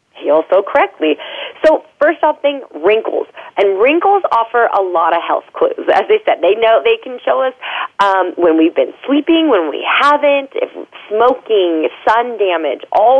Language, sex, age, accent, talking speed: English, female, 30-49, American, 175 wpm